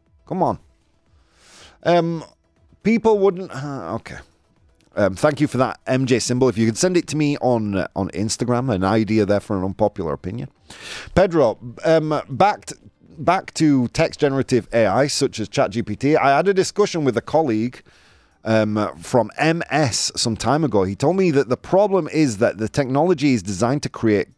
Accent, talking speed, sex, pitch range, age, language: British, 175 wpm, male, 95-140 Hz, 30-49, English